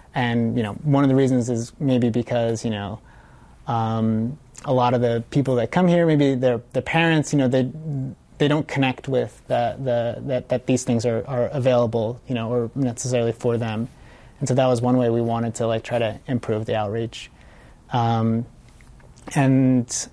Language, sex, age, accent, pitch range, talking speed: English, male, 30-49, American, 115-130 Hz, 190 wpm